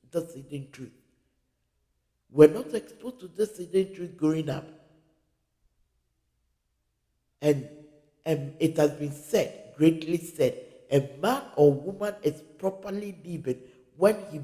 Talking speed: 110 wpm